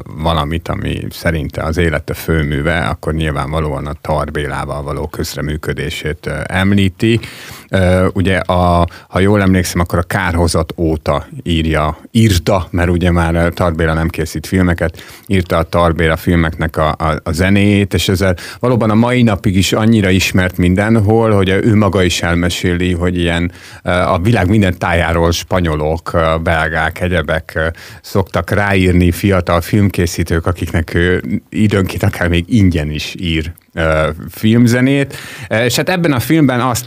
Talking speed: 135 wpm